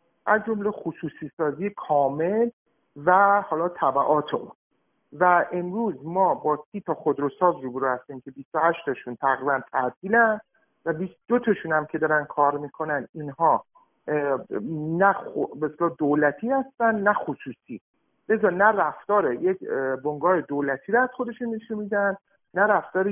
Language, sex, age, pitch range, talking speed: Persian, male, 50-69, 155-220 Hz, 140 wpm